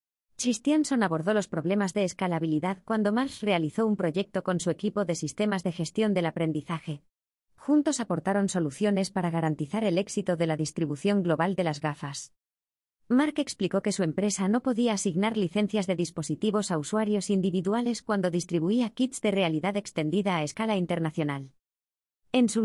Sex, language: female, Spanish